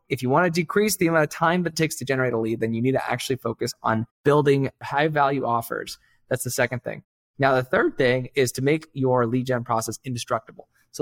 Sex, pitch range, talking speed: male, 120-140 Hz, 230 wpm